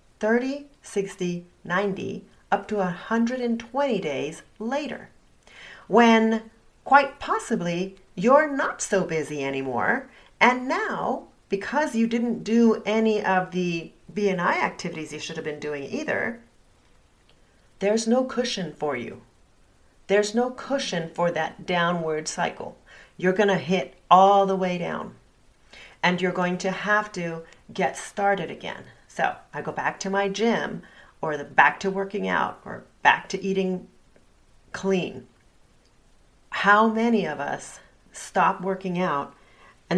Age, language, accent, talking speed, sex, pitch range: 40-59, English, American, 130 wpm, female, 175-225 Hz